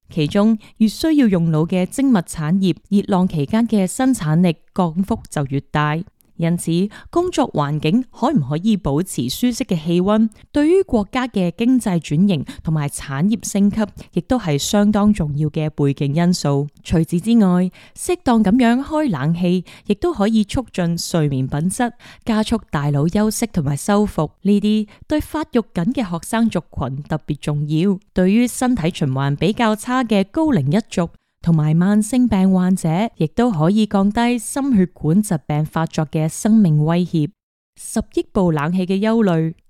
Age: 20-39